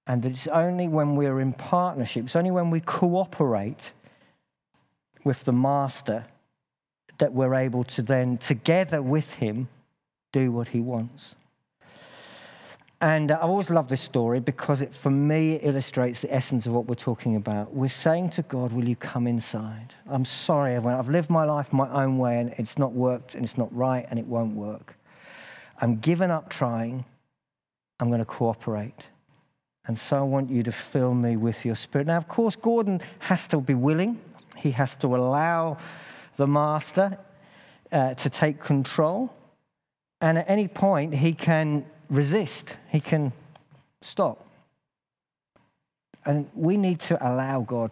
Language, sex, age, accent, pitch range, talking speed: English, male, 50-69, British, 120-155 Hz, 160 wpm